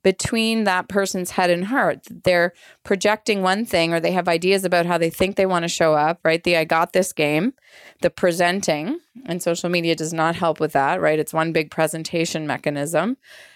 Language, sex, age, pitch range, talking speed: English, female, 30-49, 175-215 Hz, 200 wpm